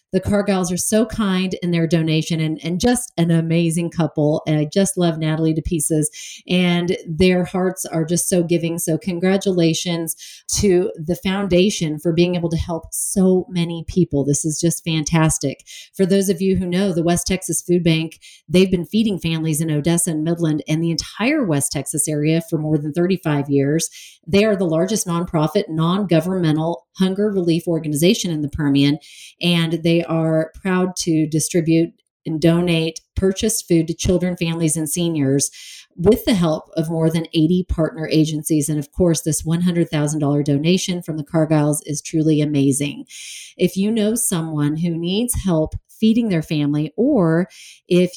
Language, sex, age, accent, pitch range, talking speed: English, female, 40-59, American, 155-185 Hz, 170 wpm